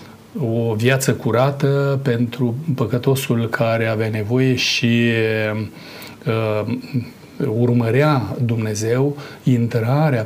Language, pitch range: Romanian, 110-135 Hz